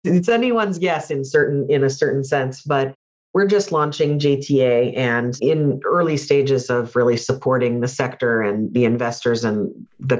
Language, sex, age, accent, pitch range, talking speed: English, female, 40-59, American, 120-145 Hz, 165 wpm